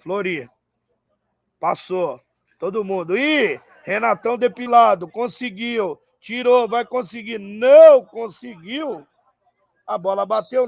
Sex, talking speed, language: male, 90 wpm, Portuguese